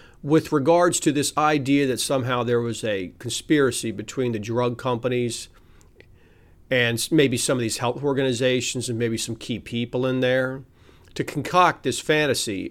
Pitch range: 115-145 Hz